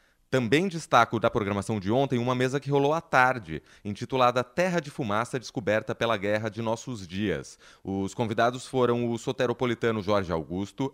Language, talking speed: Portuguese, 160 wpm